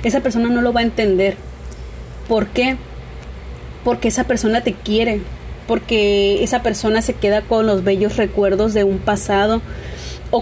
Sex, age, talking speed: female, 30-49, 155 wpm